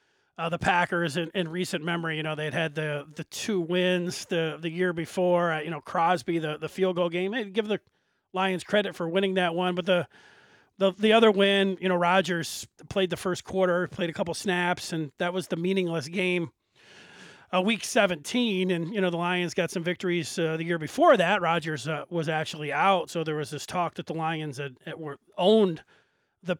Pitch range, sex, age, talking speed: 160-185 Hz, male, 40-59, 210 wpm